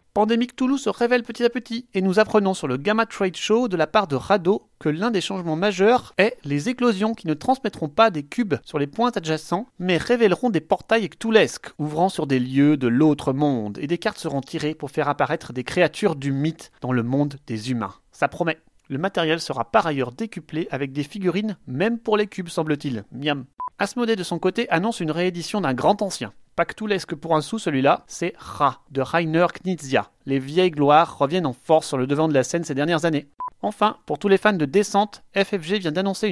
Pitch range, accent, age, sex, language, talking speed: 150-210 Hz, French, 30-49, male, French, 215 wpm